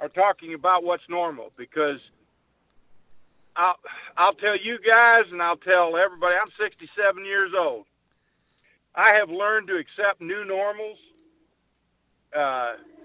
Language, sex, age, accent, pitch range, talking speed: English, male, 50-69, American, 155-200 Hz, 125 wpm